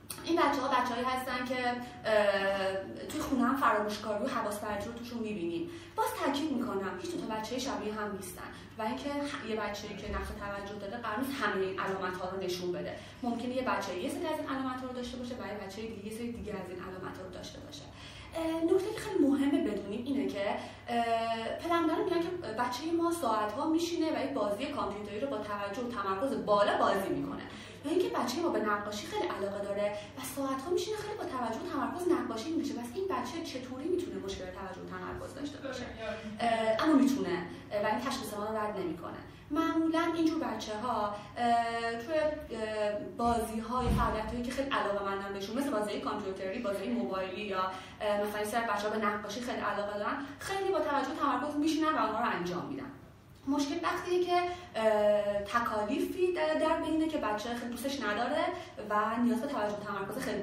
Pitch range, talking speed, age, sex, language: 210-305 Hz, 165 wpm, 30-49, female, Persian